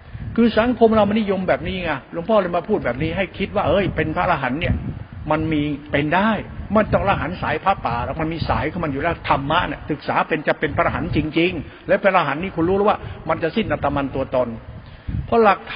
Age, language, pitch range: 60-79, Thai, 160-210 Hz